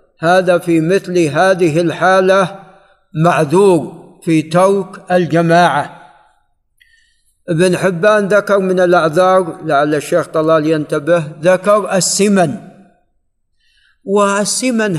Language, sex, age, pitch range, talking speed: Arabic, male, 50-69, 160-195 Hz, 85 wpm